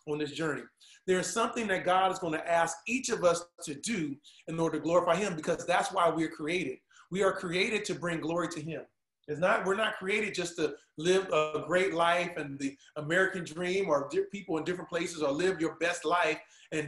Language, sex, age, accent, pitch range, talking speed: English, male, 30-49, American, 165-200 Hz, 215 wpm